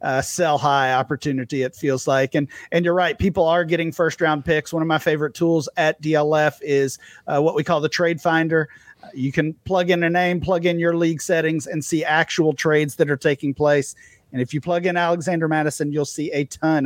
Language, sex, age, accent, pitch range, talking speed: English, male, 40-59, American, 145-170 Hz, 225 wpm